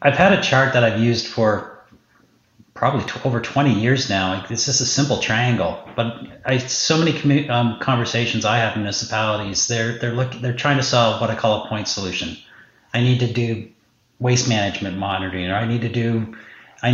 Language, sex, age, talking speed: English, male, 40-59, 200 wpm